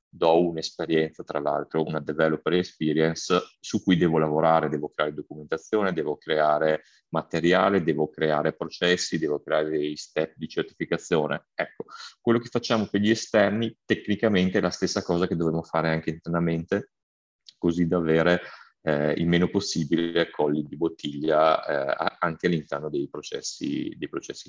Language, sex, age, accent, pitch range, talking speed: Italian, male, 30-49, native, 80-90 Hz, 145 wpm